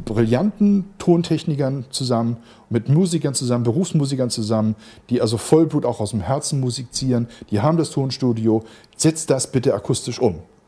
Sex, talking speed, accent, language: male, 145 wpm, German, German